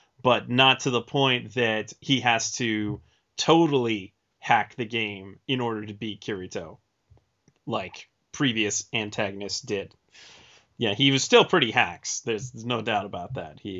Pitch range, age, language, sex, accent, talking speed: 110-130 Hz, 30-49, English, male, American, 150 wpm